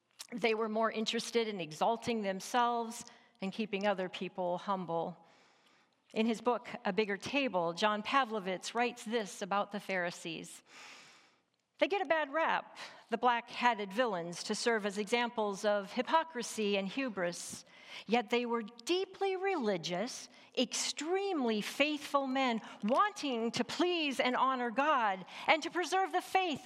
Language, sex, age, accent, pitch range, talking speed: English, female, 50-69, American, 205-265 Hz, 135 wpm